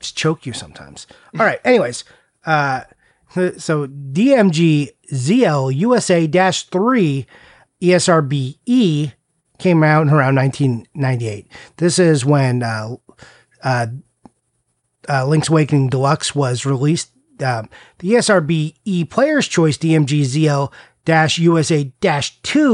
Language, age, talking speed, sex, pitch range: English, 30-49, 90 wpm, male, 135-170 Hz